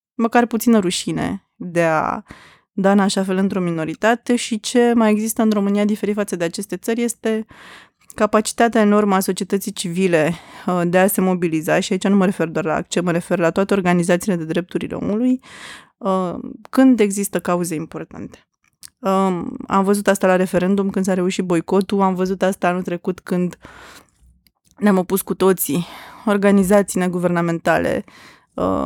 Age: 20-39